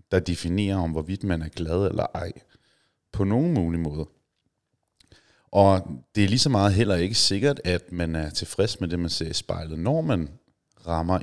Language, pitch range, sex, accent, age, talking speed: Danish, 85-110 Hz, male, native, 30-49, 185 wpm